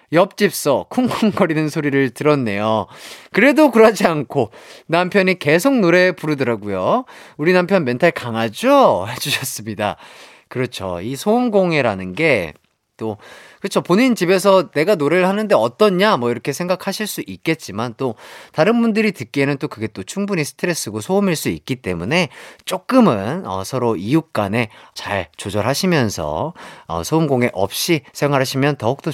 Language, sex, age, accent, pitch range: Korean, male, 30-49, native, 115-195 Hz